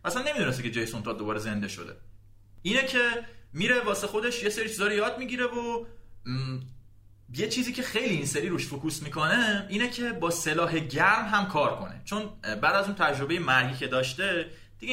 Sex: male